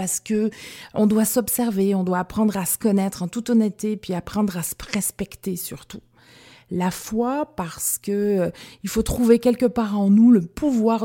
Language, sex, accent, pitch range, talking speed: French, female, French, 165-215 Hz, 175 wpm